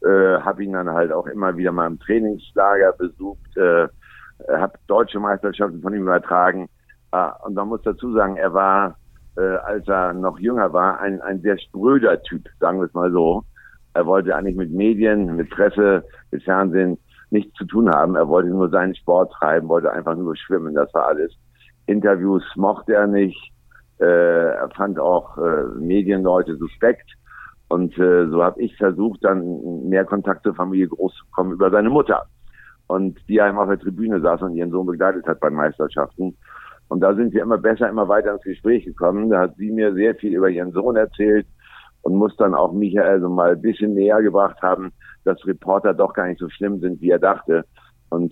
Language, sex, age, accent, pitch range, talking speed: German, male, 60-79, German, 90-100 Hz, 190 wpm